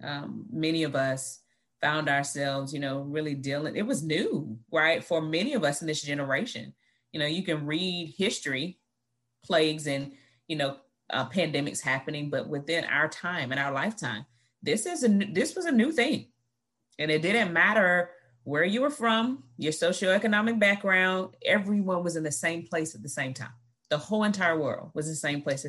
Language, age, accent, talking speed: English, 30-49, American, 185 wpm